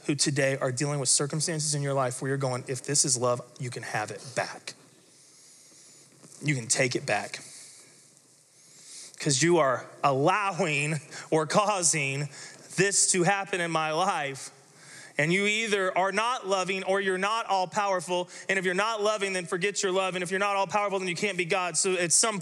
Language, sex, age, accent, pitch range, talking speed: English, male, 20-39, American, 155-200 Hz, 190 wpm